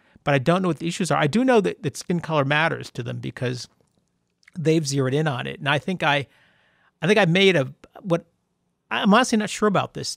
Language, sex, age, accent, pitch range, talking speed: English, male, 40-59, American, 140-170 Hz, 235 wpm